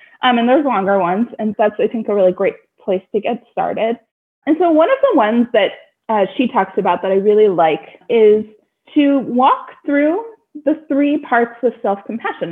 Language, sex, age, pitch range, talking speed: English, female, 20-39, 200-280 Hz, 190 wpm